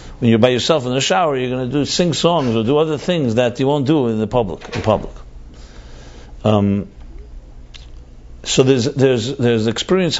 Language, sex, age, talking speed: English, male, 50-69, 190 wpm